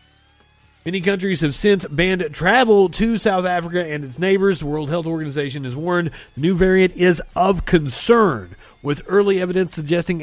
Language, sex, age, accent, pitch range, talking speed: English, male, 40-59, American, 140-195 Hz, 165 wpm